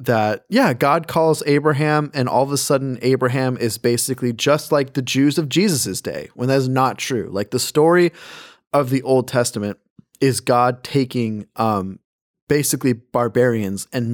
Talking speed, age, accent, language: 165 wpm, 20-39, American, English